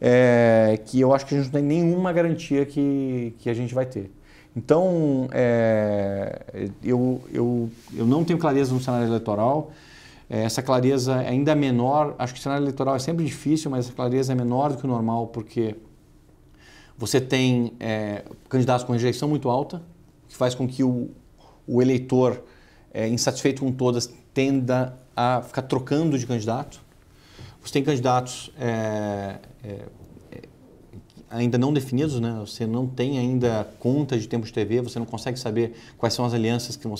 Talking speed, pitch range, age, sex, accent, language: 175 wpm, 115-140 Hz, 40-59, male, Brazilian, Portuguese